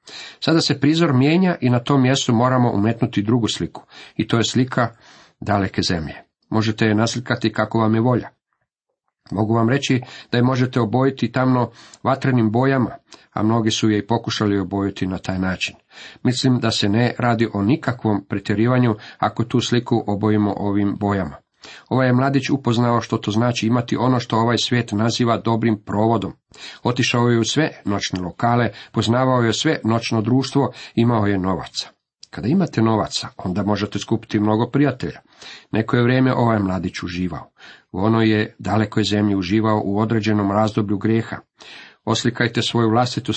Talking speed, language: 160 wpm, Croatian